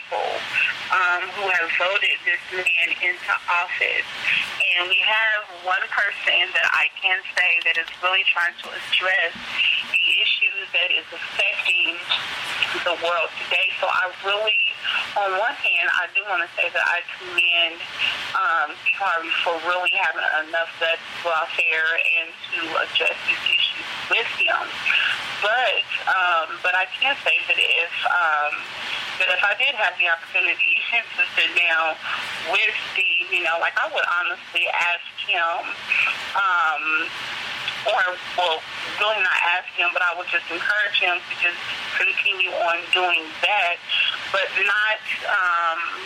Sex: female